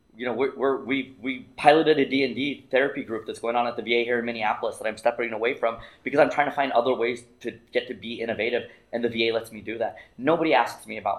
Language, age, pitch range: English, 20-39, 110-140 Hz